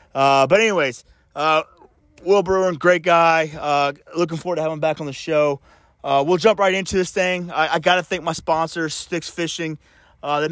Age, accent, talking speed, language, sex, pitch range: 30-49, American, 205 wpm, English, male, 155-180 Hz